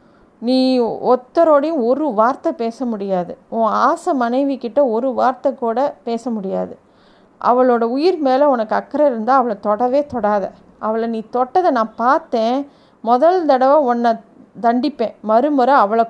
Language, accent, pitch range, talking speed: Tamil, native, 230-275 Hz, 130 wpm